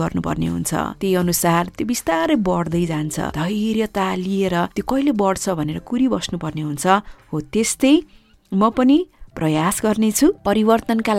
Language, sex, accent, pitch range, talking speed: English, female, Indian, 175-255 Hz, 145 wpm